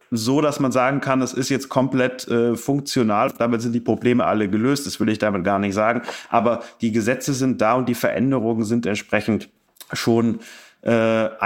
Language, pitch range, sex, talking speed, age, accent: German, 110-130 Hz, male, 190 wpm, 30-49, German